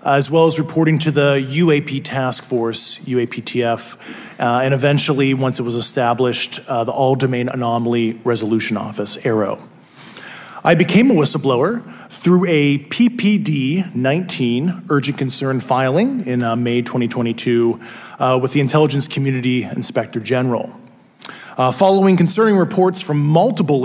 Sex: male